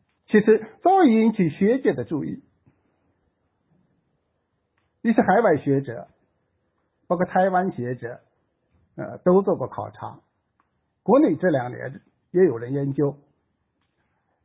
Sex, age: male, 60-79